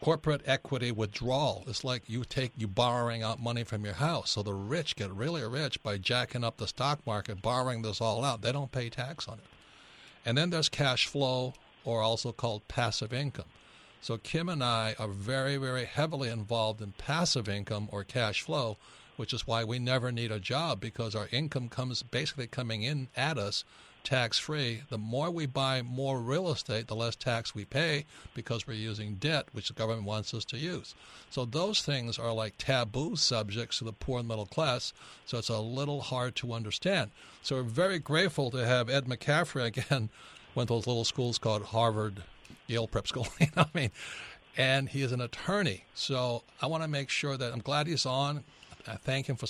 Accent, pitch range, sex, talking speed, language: American, 115-140 Hz, male, 200 wpm, English